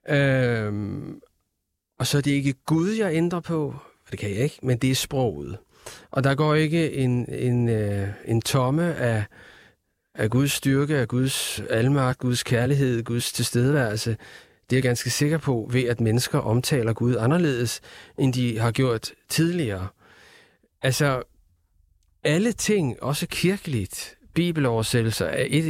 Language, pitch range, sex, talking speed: Danish, 115-155 Hz, male, 145 wpm